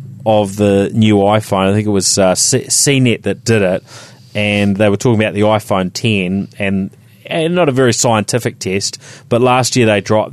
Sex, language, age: male, English, 30-49